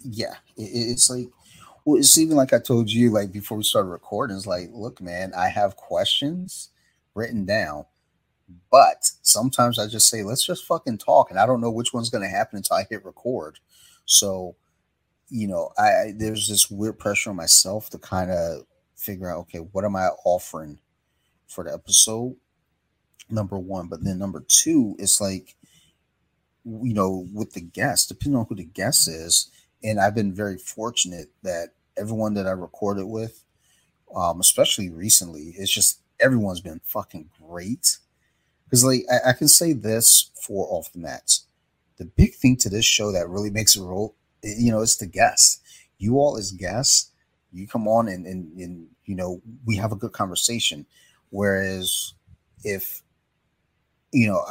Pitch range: 90-120 Hz